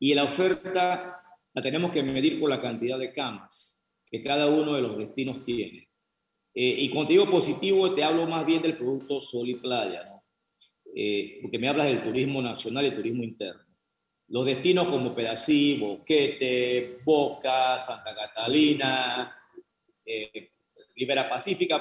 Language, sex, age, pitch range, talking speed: Spanish, male, 40-59, 130-175 Hz, 150 wpm